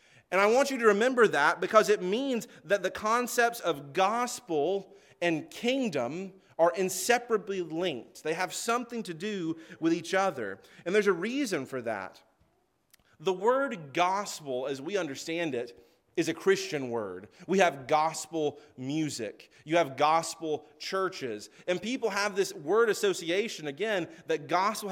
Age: 30-49